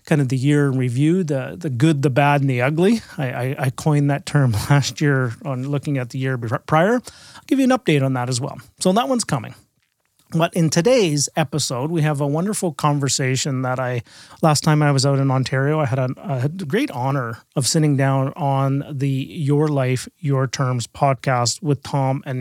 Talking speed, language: 215 wpm, English